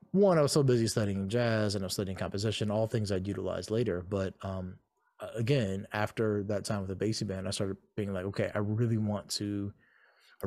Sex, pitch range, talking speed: male, 100-120 Hz, 210 wpm